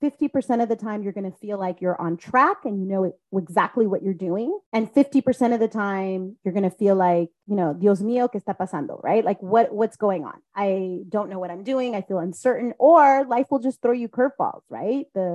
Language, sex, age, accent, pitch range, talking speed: English, female, 30-49, American, 195-265 Hz, 235 wpm